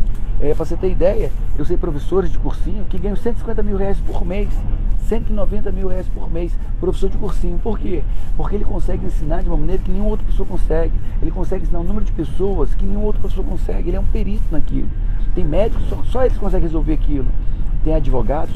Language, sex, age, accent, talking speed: Portuguese, male, 40-59, Brazilian, 215 wpm